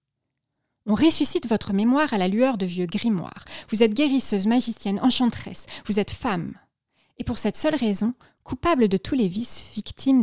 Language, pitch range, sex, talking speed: French, 165-245 Hz, female, 170 wpm